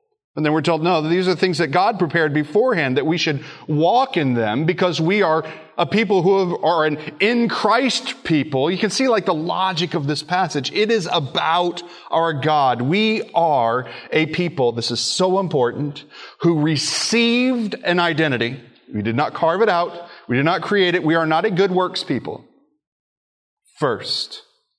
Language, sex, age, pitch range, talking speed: English, male, 30-49, 145-200 Hz, 180 wpm